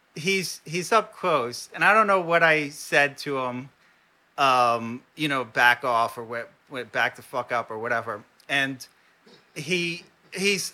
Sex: male